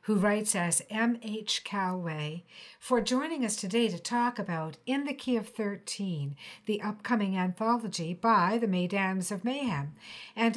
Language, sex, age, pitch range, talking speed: English, female, 60-79, 180-240 Hz, 150 wpm